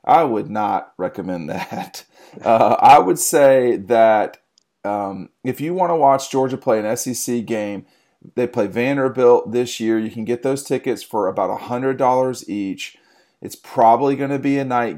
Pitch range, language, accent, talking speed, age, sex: 115-135 Hz, English, American, 170 wpm, 40-59, male